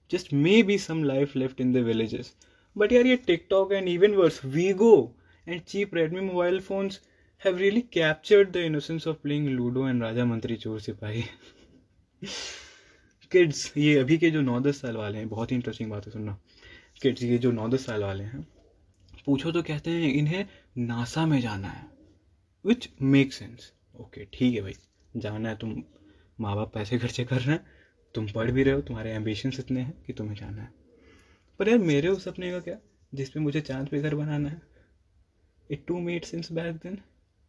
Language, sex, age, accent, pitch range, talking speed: Hindi, male, 20-39, native, 110-160 Hz, 125 wpm